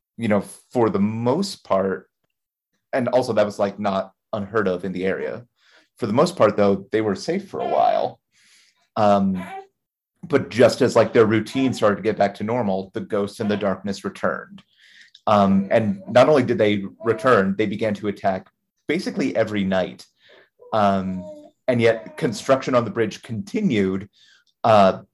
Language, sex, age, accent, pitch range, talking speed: English, male, 30-49, American, 100-120 Hz, 165 wpm